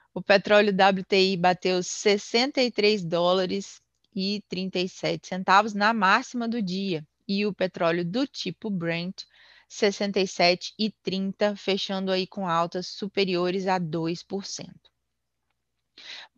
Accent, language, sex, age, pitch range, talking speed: Brazilian, Portuguese, female, 20-39, 175-210 Hz, 100 wpm